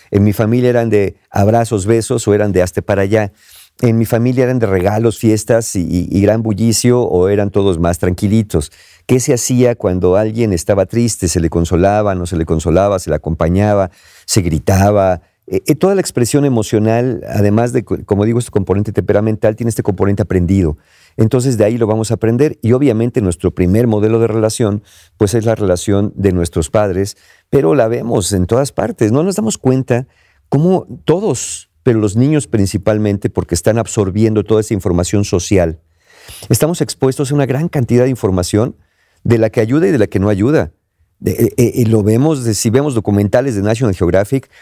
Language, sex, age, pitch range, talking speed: Spanish, male, 50-69, 95-120 Hz, 185 wpm